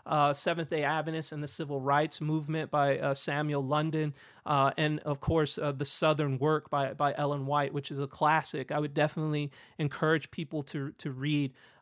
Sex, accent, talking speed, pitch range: male, American, 190 wpm, 145-165 Hz